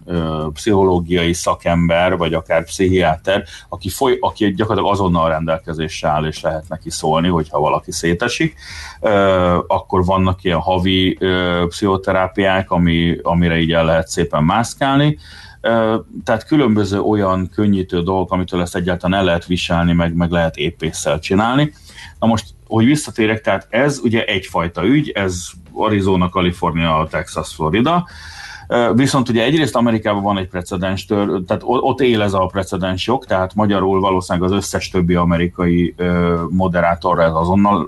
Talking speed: 135 wpm